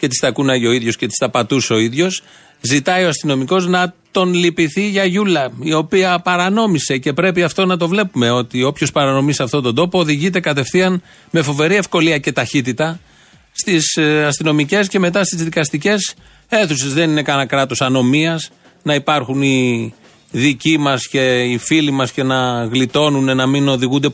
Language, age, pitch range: Greek, 40-59, 130-170 Hz